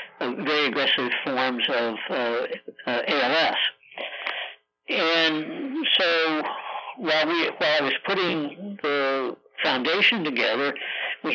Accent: American